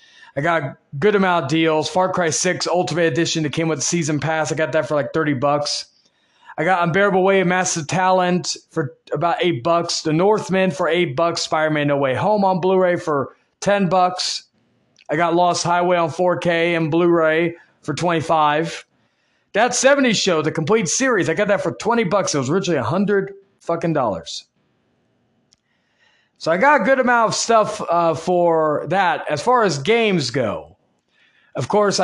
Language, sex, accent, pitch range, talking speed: English, male, American, 155-185 Hz, 185 wpm